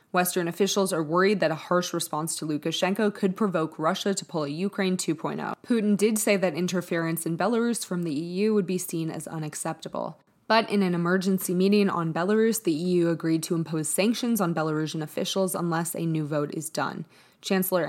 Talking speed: 190 wpm